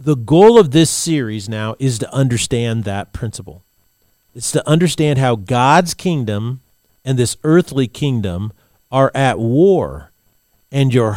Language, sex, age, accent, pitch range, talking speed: English, male, 40-59, American, 105-150 Hz, 140 wpm